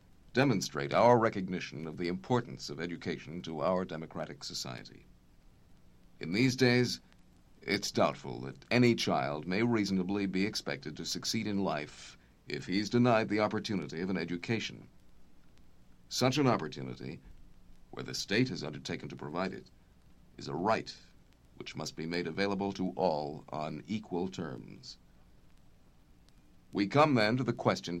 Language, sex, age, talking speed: English, male, 50-69, 140 wpm